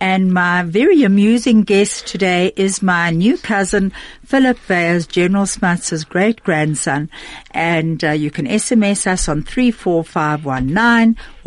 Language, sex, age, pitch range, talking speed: English, female, 60-79, 165-225 Hz, 120 wpm